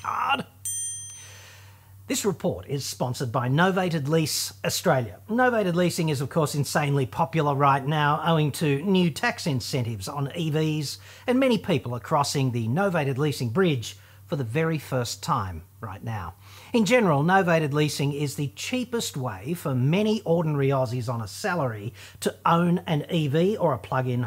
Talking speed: 155 wpm